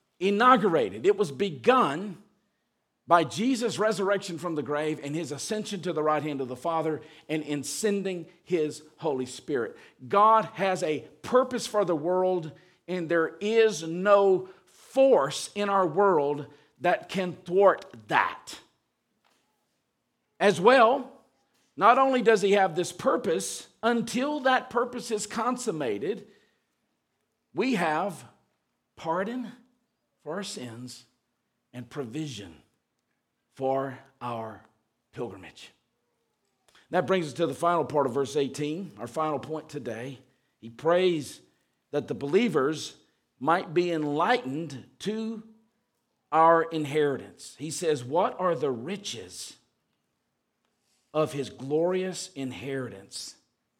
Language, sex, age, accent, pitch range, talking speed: English, male, 50-69, American, 145-205 Hz, 115 wpm